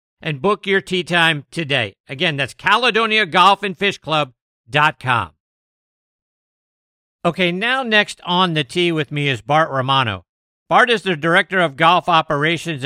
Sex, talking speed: male, 135 wpm